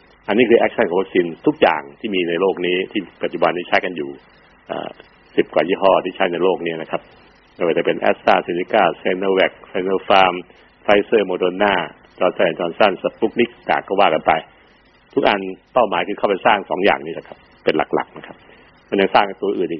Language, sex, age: Thai, male, 60-79